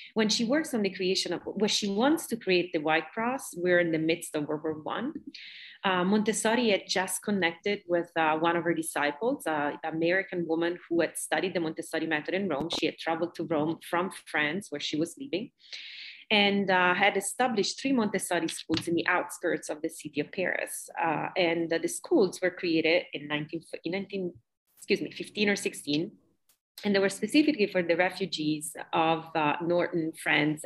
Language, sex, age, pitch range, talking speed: English, female, 30-49, 160-210 Hz, 190 wpm